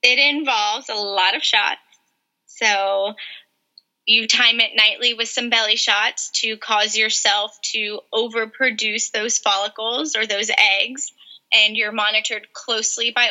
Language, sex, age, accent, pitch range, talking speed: English, female, 20-39, American, 205-235 Hz, 135 wpm